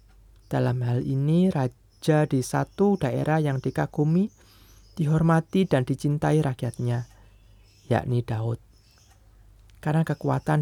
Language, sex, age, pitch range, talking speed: Indonesian, male, 20-39, 105-150 Hz, 95 wpm